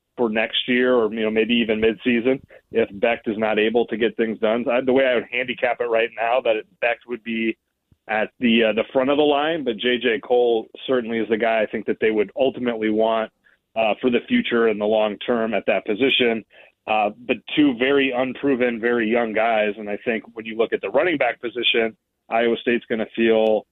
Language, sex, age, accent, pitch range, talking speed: English, male, 30-49, American, 110-125 Hz, 220 wpm